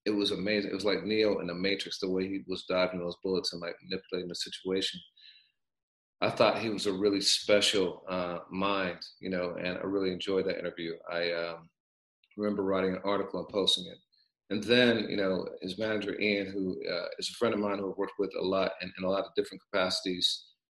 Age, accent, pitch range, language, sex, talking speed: 40-59, American, 90-100 Hz, English, male, 215 wpm